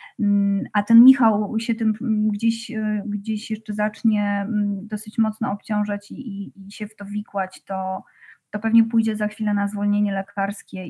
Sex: female